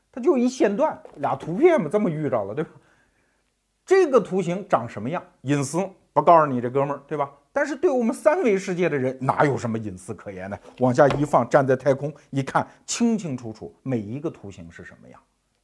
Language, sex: Chinese, male